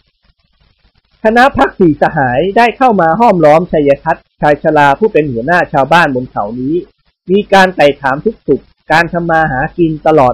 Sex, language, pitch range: male, Thai, 140-185 Hz